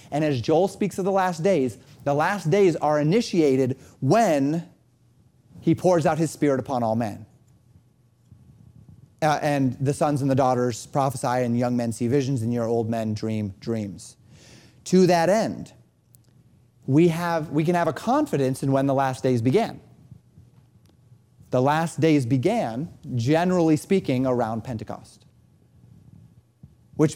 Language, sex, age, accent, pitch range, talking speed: English, male, 30-49, American, 125-160 Hz, 145 wpm